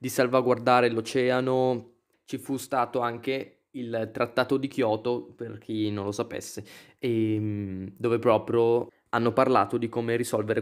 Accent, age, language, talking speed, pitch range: native, 20-39, Italian, 135 wpm, 115-140 Hz